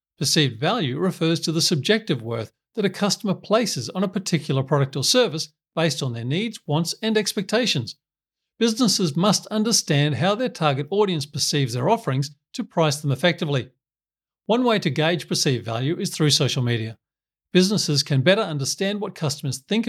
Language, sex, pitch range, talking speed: English, male, 140-200 Hz, 165 wpm